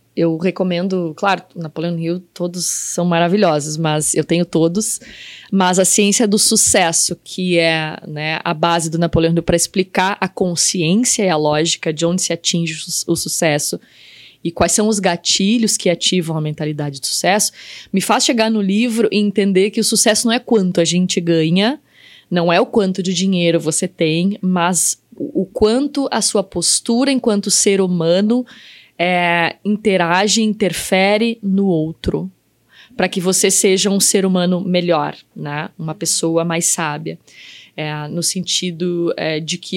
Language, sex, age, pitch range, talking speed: Portuguese, female, 20-39, 170-205 Hz, 165 wpm